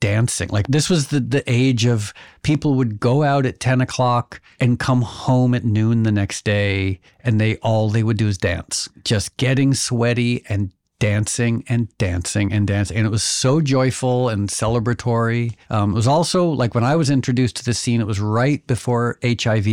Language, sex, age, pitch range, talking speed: English, male, 50-69, 110-130 Hz, 200 wpm